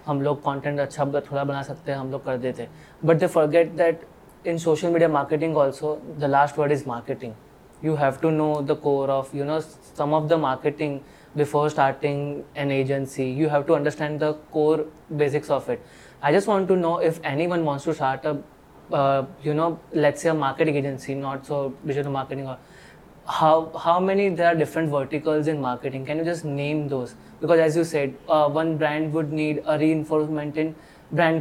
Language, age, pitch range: English, 20-39, 140-160 Hz